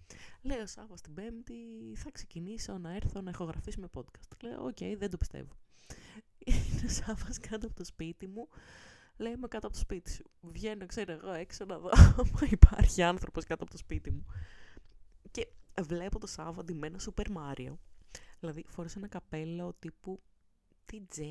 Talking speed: 170 wpm